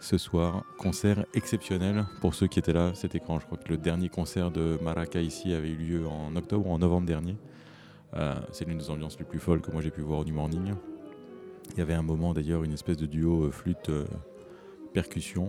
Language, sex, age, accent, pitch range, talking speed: French, male, 30-49, French, 75-90 Hz, 215 wpm